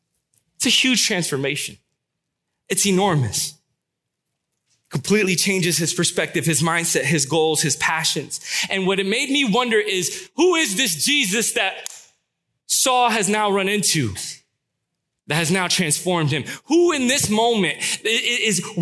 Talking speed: 135 wpm